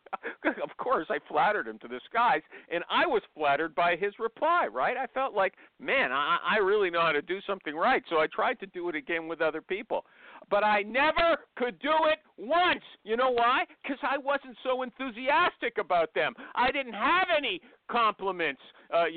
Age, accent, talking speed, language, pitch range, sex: 50-69, American, 195 wpm, English, 205-315 Hz, male